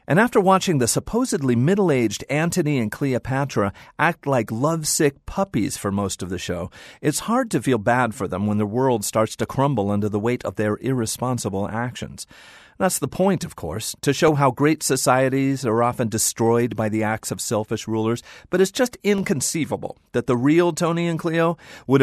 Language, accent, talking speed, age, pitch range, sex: English, American, 185 wpm, 40-59, 110-150 Hz, male